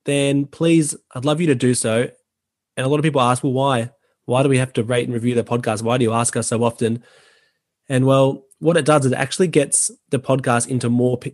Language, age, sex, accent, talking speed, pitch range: English, 20-39, male, Australian, 245 wpm, 120-145 Hz